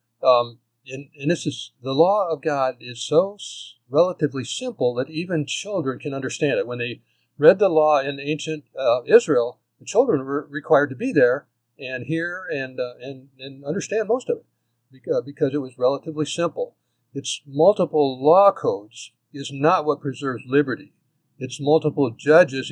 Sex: male